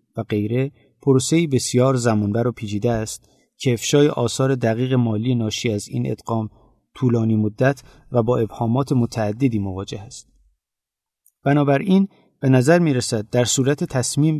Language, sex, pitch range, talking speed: Persian, male, 115-145 Hz, 140 wpm